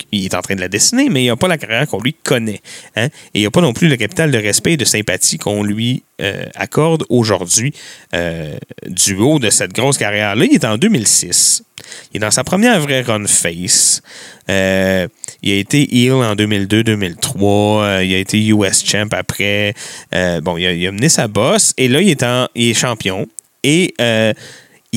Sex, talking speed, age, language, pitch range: male, 200 wpm, 30-49, French, 105-150 Hz